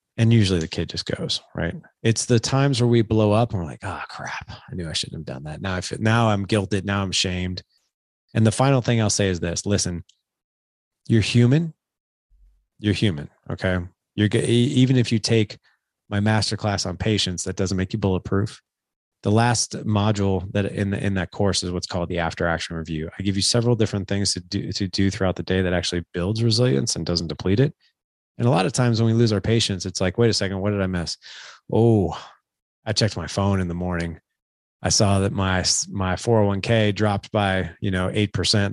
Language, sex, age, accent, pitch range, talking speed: English, male, 30-49, American, 90-110 Hz, 215 wpm